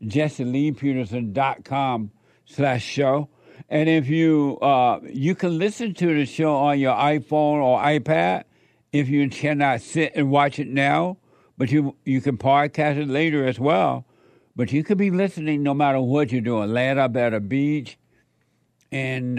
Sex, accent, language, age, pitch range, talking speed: male, American, English, 60-79, 135-160 Hz, 165 wpm